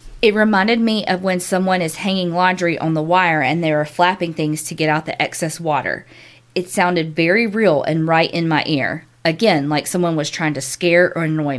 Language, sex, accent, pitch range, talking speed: English, female, American, 155-185 Hz, 210 wpm